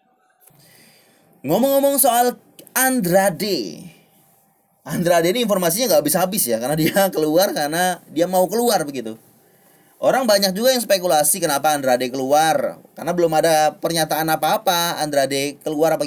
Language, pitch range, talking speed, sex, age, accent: Indonesian, 155-205 Hz, 125 wpm, male, 30-49, native